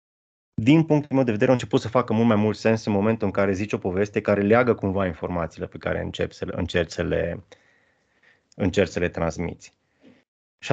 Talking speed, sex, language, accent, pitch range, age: 180 wpm, male, Romanian, native, 95-115 Hz, 20-39